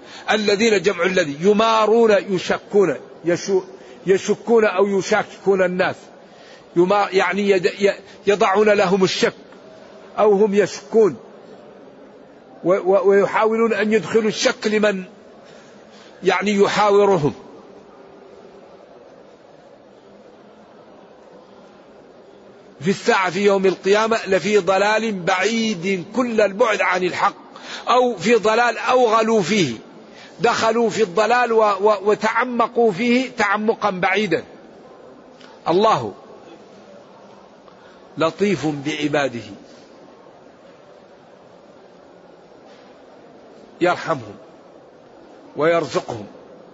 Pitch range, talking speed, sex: 180-215 Hz, 70 wpm, male